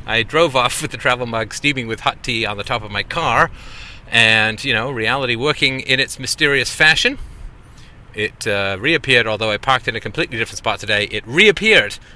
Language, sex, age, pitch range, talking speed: English, male, 30-49, 110-135 Hz, 195 wpm